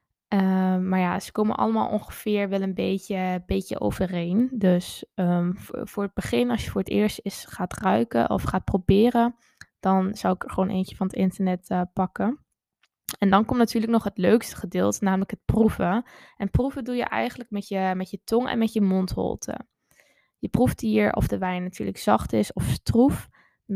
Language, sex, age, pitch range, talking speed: Dutch, female, 10-29, 185-220 Hz, 185 wpm